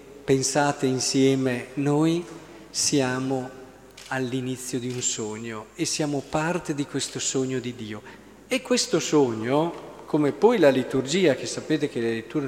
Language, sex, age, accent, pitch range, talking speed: Italian, male, 40-59, native, 130-180 Hz, 135 wpm